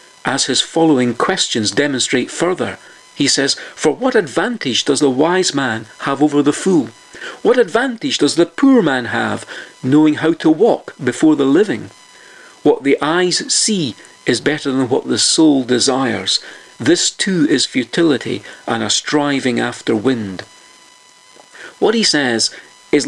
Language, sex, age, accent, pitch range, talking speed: English, male, 50-69, British, 130-200 Hz, 150 wpm